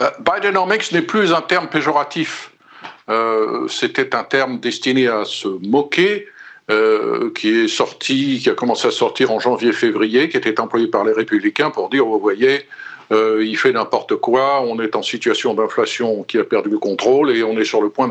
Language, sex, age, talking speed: French, male, 50-69, 190 wpm